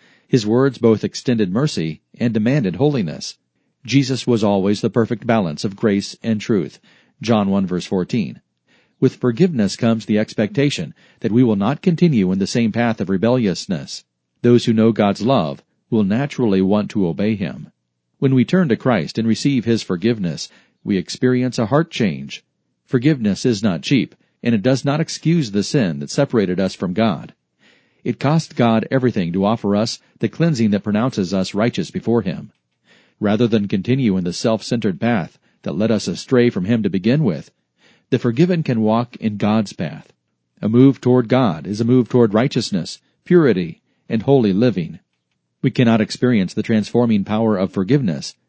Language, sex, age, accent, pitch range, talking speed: English, male, 40-59, American, 105-135 Hz, 170 wpm